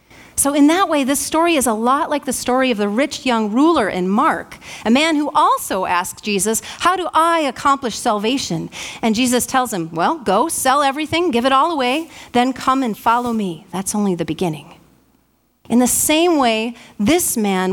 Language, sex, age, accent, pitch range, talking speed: English, female, 40-59, American, 215-295 Hz, 195 wpm